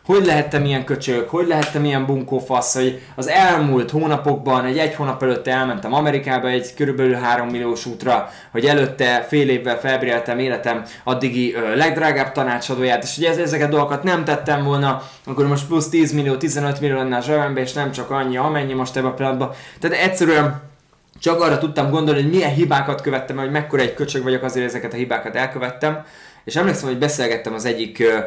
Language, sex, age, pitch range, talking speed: Hungarian, male, 20-39, 120-145 Hz, 180 wpm